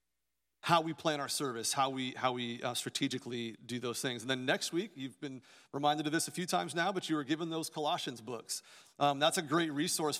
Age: 40-59